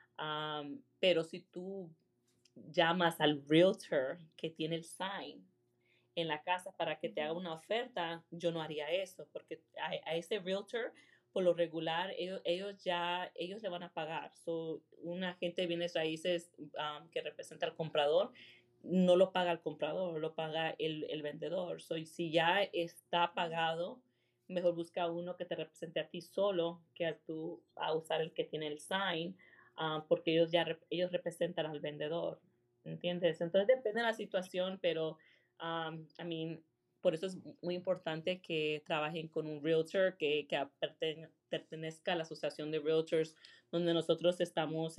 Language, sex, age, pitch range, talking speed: Spanish, female, 30-49, 160-180 Hz, 165 wpm